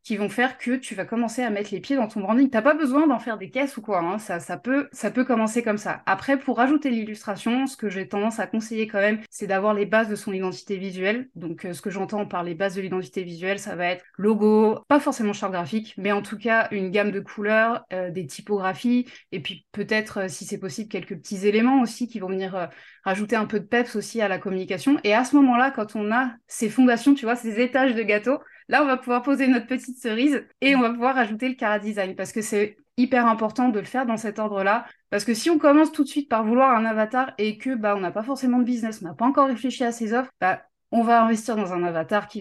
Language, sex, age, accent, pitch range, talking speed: French, female, 20-39, French, 200-245 Hz, 260 wpm